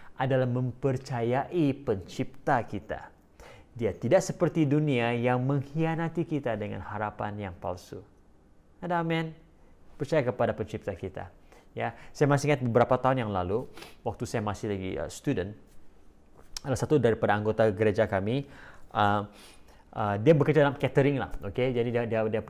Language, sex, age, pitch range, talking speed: English, male, 30-49, 105-140 Hz, 140 wpm